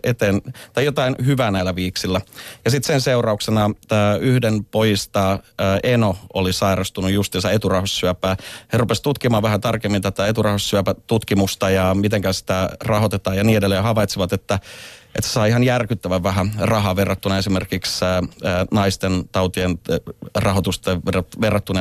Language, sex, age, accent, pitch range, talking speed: Finnish, male, 30-49, native, 95-115 Hz, 125 wpm